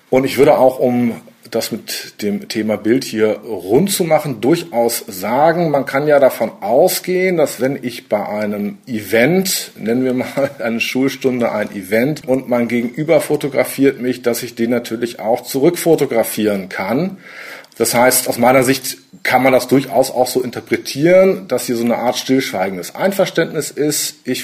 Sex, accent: male, German